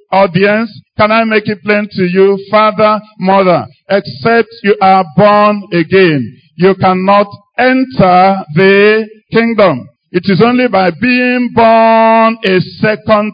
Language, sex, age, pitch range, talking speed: English, male, 50-69, 180-225 Hz, 125 wpm